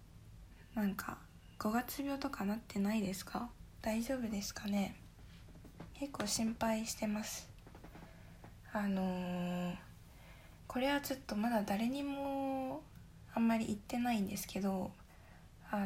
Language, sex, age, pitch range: Japanese, female, 20-39, 200-245 Hz